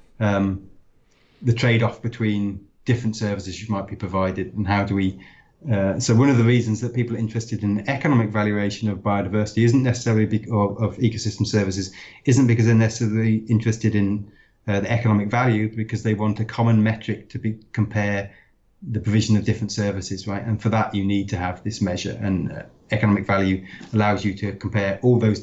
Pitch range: 100-115 Hz